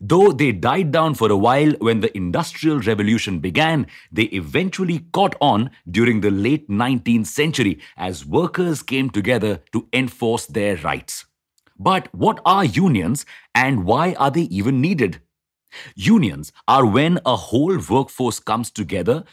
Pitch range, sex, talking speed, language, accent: 105-145 Hz, male, 145 wpm, English, Indian